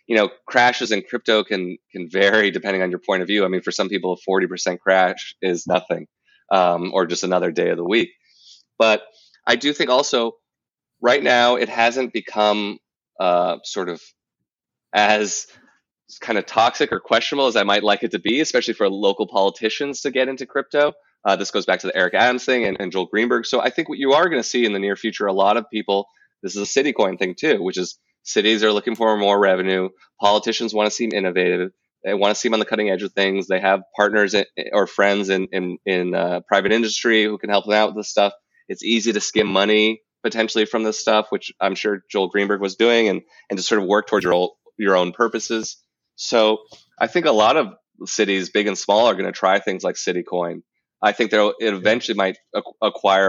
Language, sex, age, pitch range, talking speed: English, male, 20-39, 95-115 Hz, 220 wpm